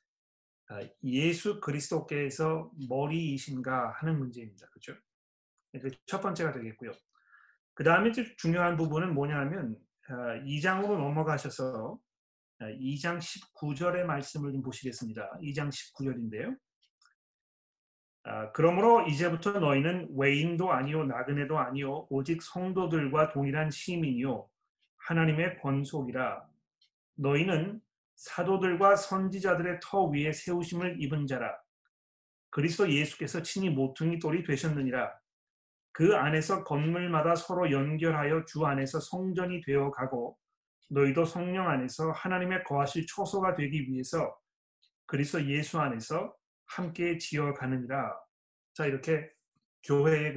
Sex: male